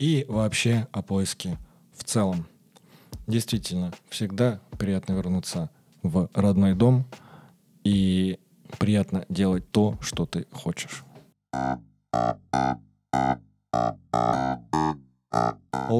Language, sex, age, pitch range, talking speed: Russian, male, 20-39, 90-115 Hz, 75 wpm